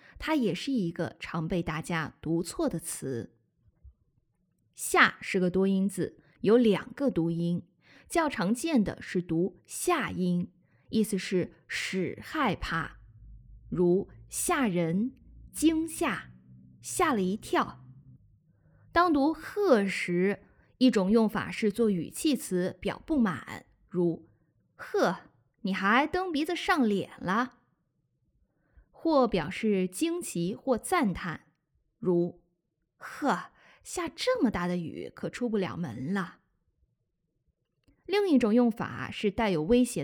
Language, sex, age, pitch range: Chinese, female, 20-39, 175-280 Hz